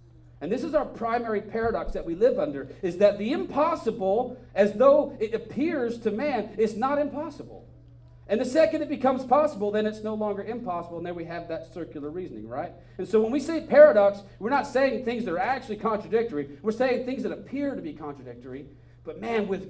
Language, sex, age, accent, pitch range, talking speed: English, male, 40-59, American, 145-220 Hz, 205 wpm